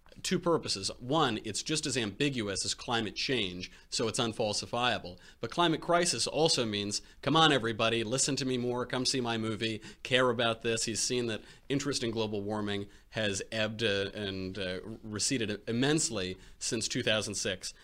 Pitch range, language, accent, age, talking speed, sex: 110-150 Hz, English, American, 30-49, 155 wpm, male